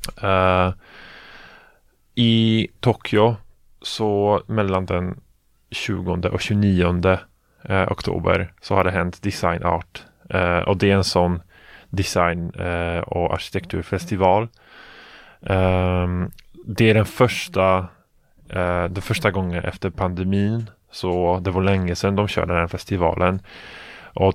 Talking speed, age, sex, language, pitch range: 120 wpm, 20-39, male, Swedish, 90-105 Hz